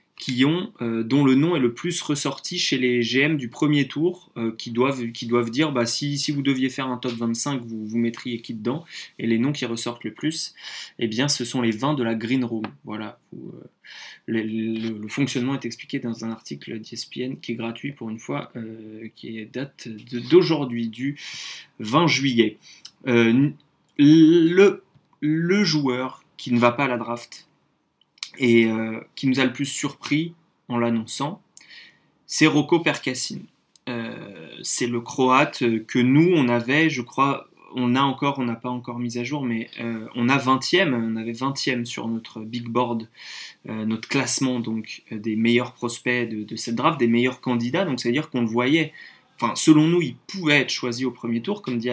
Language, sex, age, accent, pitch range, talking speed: French, male, 20-39, French, 115-145 Hz, 195 wpm